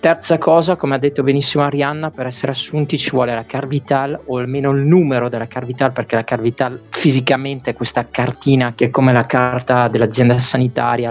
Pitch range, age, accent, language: 125-145 Hz, 20-39, native, Italian